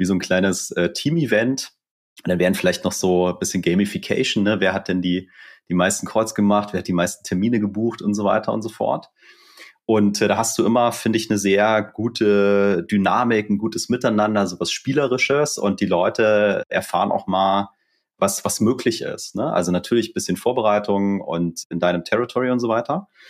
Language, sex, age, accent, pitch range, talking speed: German, male, 30-49, German, 90-110 Hz, 200 wpm